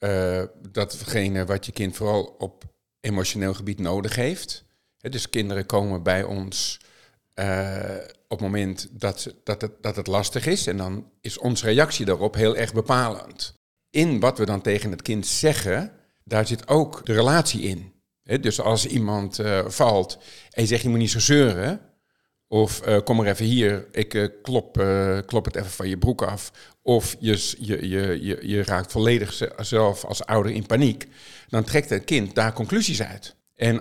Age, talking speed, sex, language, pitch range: 50-69, 185 wpm, male, Dutch, 100-125 Hz